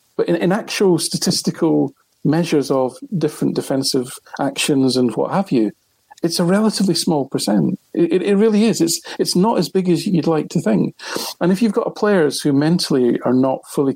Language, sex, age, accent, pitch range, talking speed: English, male, 50-69, British, 135-175 Hz, 195 wpm